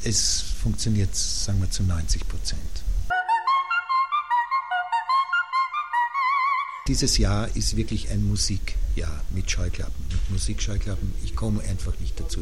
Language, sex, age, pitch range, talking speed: German, male, 60-79, 80-110 Hz, 105 wpm